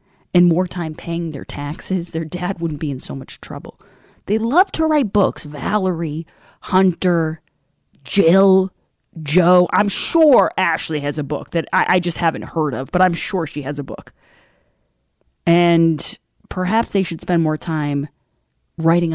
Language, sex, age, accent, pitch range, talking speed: English, female, 30-49, American, 150-190 Hz, 160 wpm